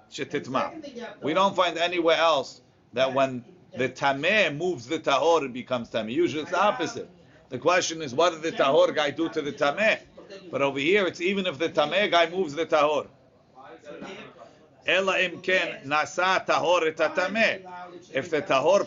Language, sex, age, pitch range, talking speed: English, male, 50-69, 145-190 Hz, 145 wpm